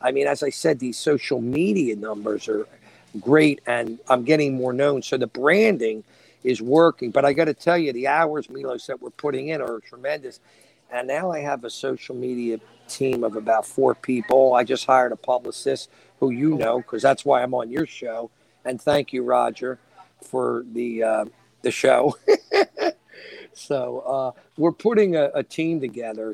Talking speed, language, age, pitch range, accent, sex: 180 wpm, English, 50-69, 125-170 Hz, American, male